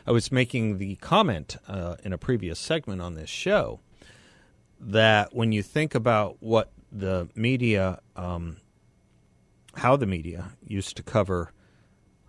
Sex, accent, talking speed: male, American, 135 wpm